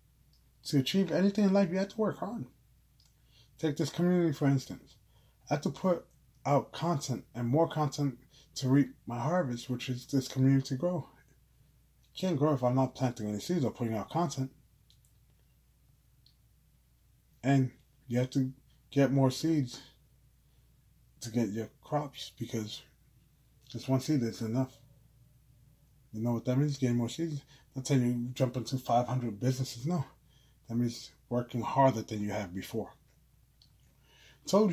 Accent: American